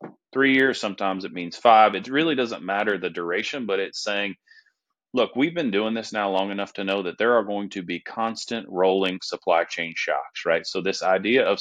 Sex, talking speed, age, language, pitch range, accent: male, 210 wpm, 30-49, English, 95-115 Hz, American